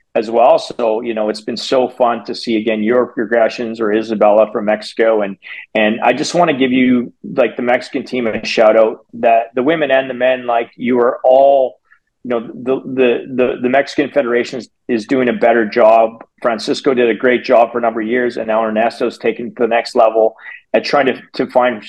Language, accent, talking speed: English, American, 215 wpm